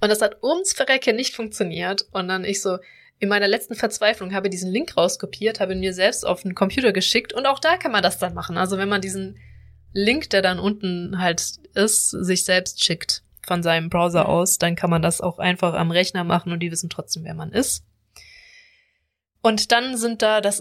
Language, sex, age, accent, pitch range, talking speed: German, female, 20-39, German, 175-215 Hz, 215 wpm